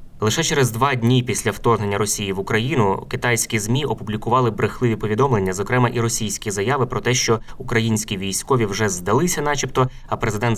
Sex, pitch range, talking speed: male, 105-125 Hz, 160 wpm